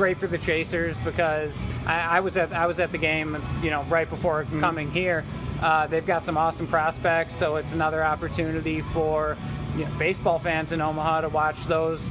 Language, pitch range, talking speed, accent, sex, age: English, 145-165 Hz, 200 wpm, American, male, 20-39